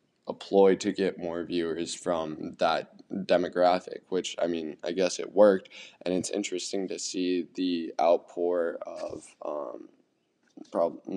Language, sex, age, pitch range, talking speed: English, male, 20-39, 90-100 Hz, 140 wpm